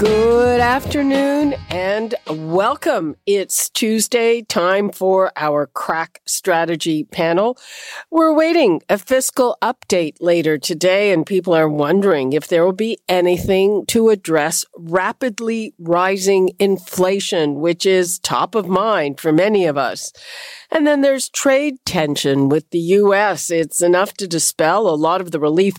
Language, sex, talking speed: English, female, 135 wpm